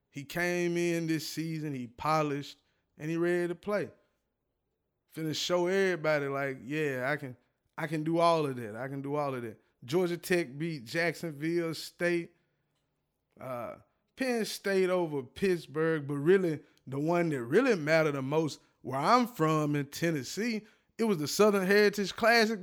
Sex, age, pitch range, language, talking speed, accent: male, 20-39, 150-195 Hz, English, 160 wpm, American